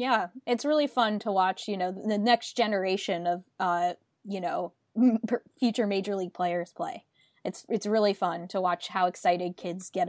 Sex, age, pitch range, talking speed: female, 20-39, 185-230 Hz, 180 wpm